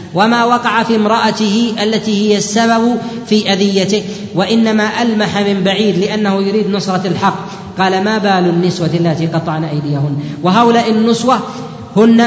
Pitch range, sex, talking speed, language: 180-210 Hz, female, 130 wpm, Arabic